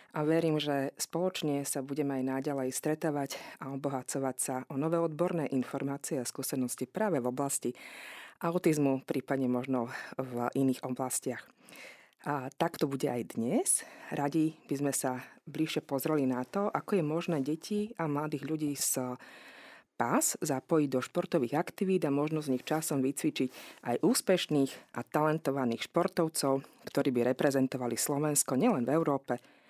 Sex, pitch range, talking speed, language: female, 130-160 Hz, 145 wpm, Slovak